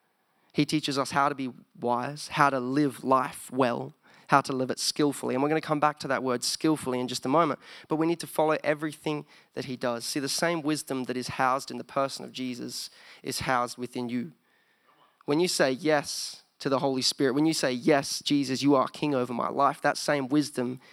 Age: 10-29